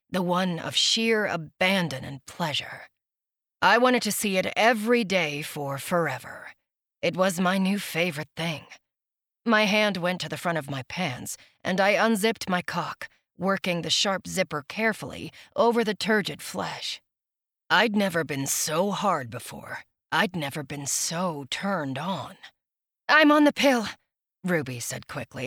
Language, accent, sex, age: English, American, female, 40-59